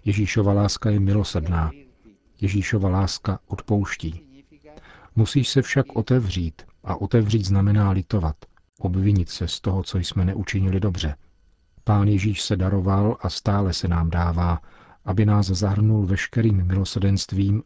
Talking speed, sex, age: 125 wpm, male, 40-59